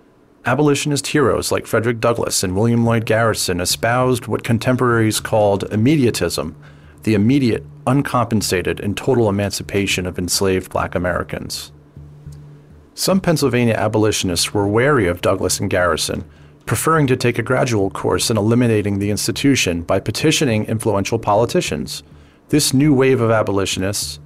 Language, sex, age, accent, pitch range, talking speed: English, male, 40-59, American, 95-125 Hz, 130 wpm